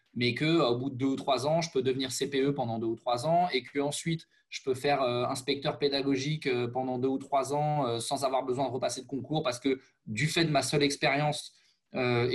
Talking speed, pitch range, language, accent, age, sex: 235 wpm, 125-150 Hz, French, French, 20-39, male